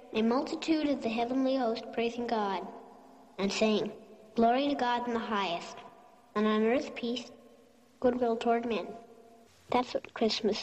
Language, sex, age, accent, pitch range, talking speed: English, male, 40-59, American, 130-205 Hz, 145 wpm